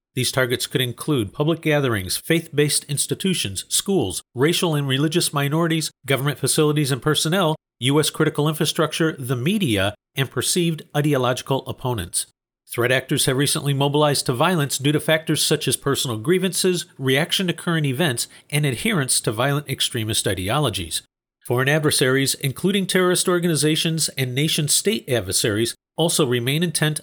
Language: English